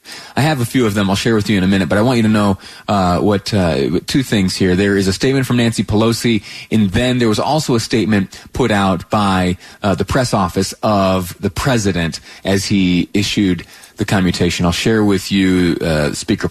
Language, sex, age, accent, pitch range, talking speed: English, male, 30-49, American, 95-130 Hz, 220 wpm